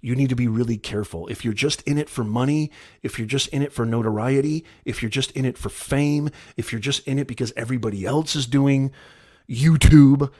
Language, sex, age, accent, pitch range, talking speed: English, male, 40-59, American, 100-140 Hz, 220 wpm